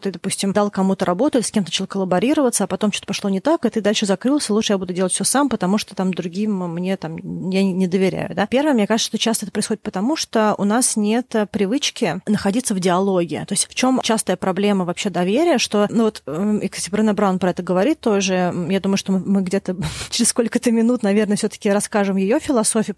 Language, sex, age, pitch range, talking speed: Russian, female, 30-49, 195-230 Hz, 220 wpm